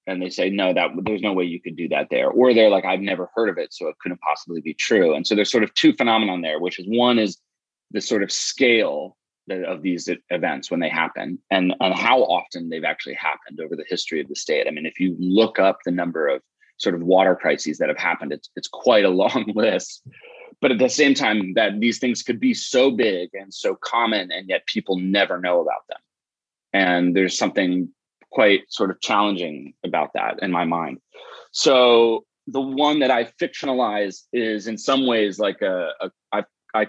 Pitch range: 95-130 Hz